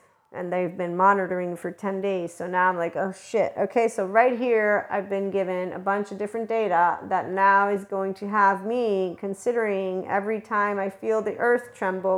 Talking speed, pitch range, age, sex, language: 195 wpm, 190-225 Hz, 40-59, female, English